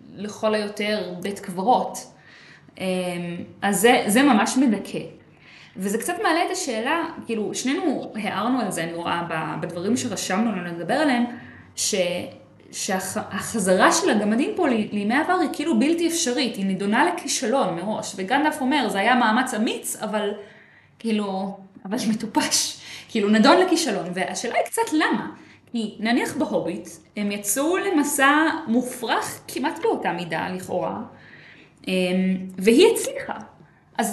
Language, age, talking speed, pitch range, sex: Hebrew, 20-39, 125 wpm, 190-260 Hz, female